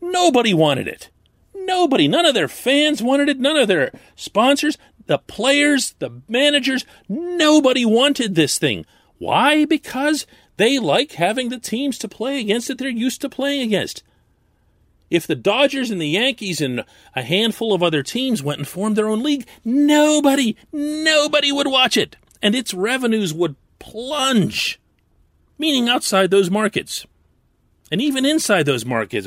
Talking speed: 155 wpm